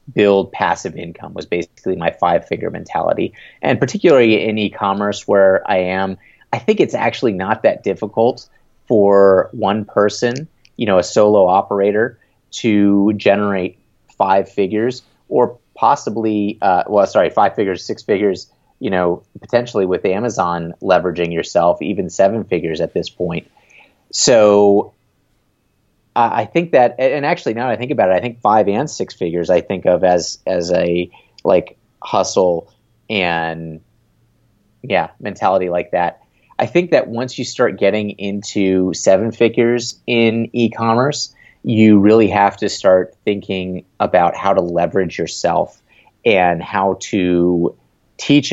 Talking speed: 145 wpm